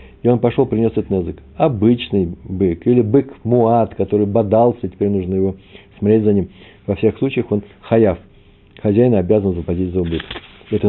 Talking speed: 160 wpm